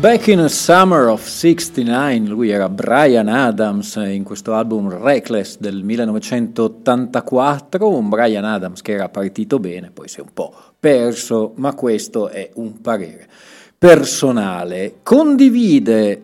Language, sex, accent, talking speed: Italian, male, native, 135 wpm